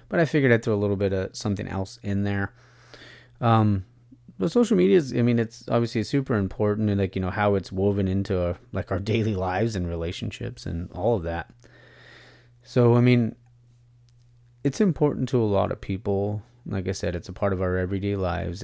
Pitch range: 100-120 Hz